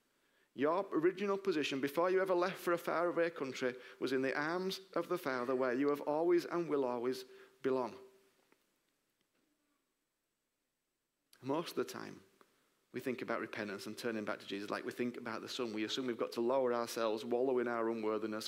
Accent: British